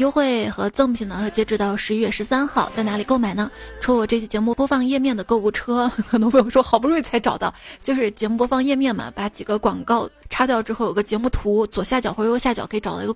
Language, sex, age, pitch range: Chinese, female, 20-39, 215-255 Hz